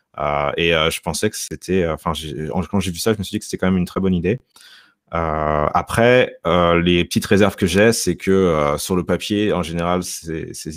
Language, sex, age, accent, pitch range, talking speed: French, male, 30-49, French, 80-95 Hz, 240 wpm